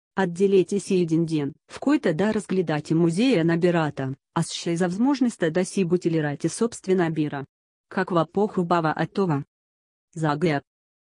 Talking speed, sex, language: 140 wpm, female, Bulgarian